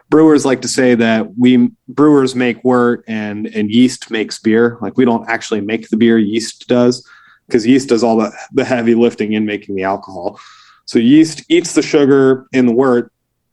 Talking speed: 190 wpm